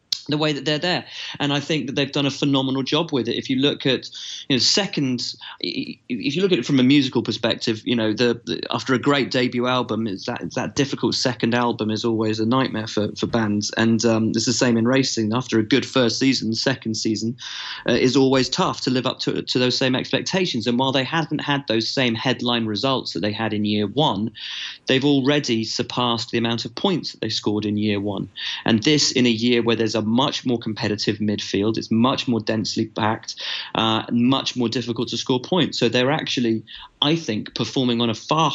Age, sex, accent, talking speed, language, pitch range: 30-49, male, British, 220 wpm, English, 110-135 Hz